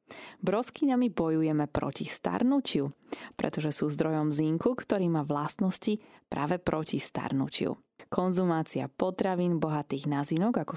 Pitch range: 145-185 Hz